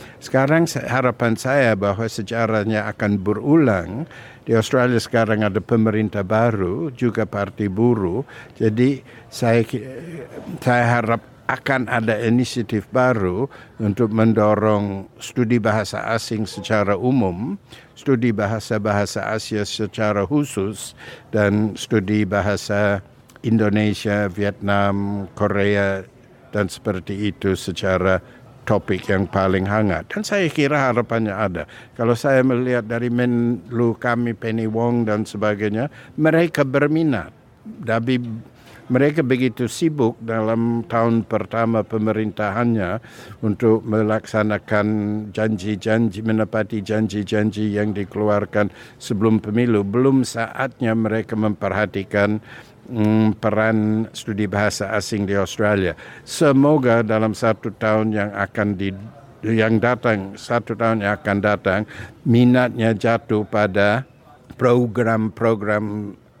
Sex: male